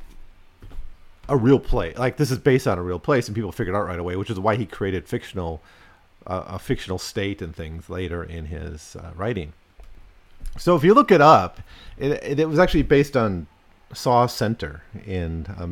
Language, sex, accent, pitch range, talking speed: English, male, American, 90-120 Hz, 190 wpm